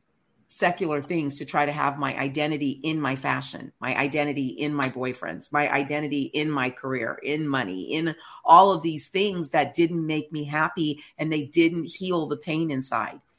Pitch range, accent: 150-175 Hz, American